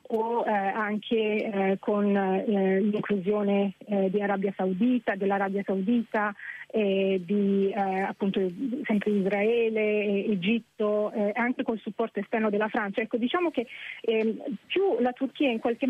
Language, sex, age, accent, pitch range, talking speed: Italian, female, 30-49, native, 205-240 Hz, 135 wpm